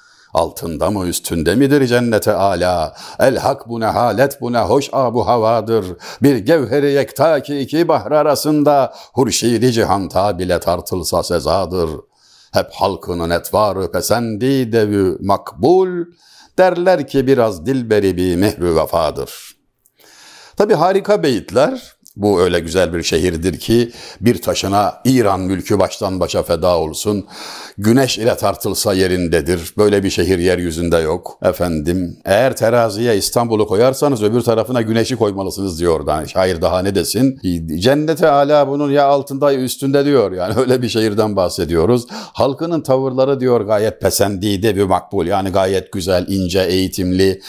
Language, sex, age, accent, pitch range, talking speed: Turkish, male, 60-79, native, 95-135 Hz, 135 wpm